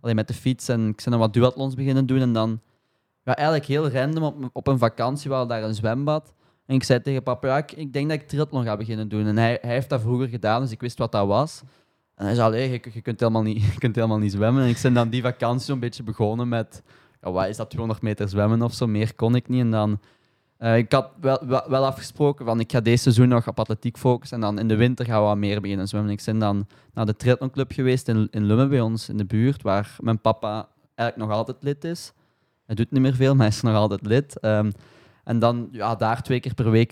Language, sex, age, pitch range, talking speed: Dutch, male, 20-39, 110-130 Hz, 265 wpm